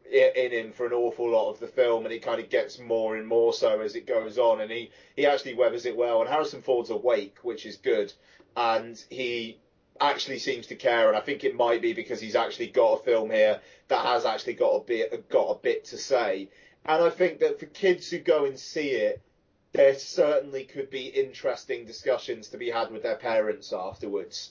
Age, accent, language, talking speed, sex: 30-49, British, English, 220 wpm, male